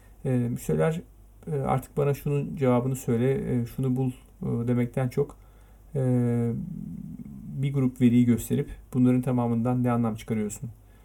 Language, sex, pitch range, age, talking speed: Turkish, male, 110-130 Hz, 40-59, 105 wpm